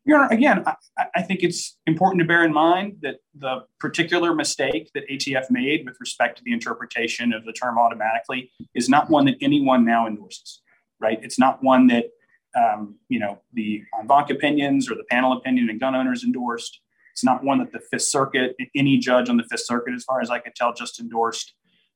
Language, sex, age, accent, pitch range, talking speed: English, male, 30-49, American, 120-170 Hz, 205 wpm